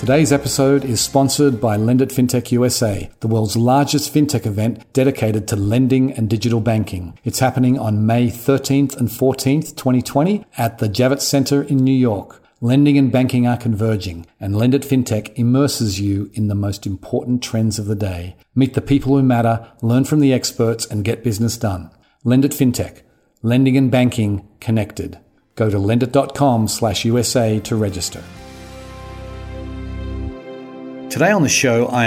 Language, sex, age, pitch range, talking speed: English, male, 40-59, 105-130 Hz, 155 wpm